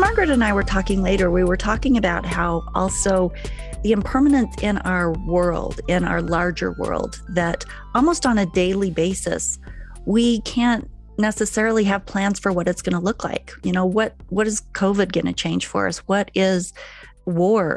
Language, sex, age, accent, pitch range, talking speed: English, female, 40-59, American, 175-215 Hz, 180 wpm